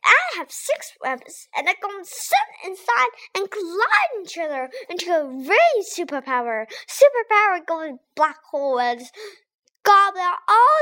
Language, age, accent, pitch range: Chinese, 10-29, American, 250-390 Hz